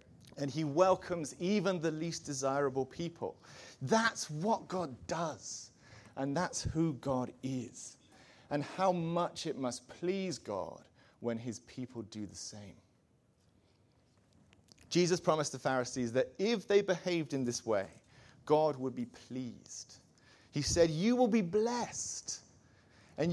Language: English